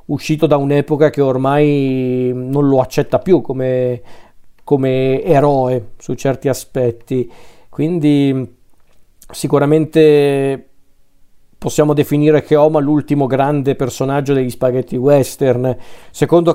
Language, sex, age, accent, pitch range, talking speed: Italian, male, 40-59, native, 130-155 Hz, 100 wpm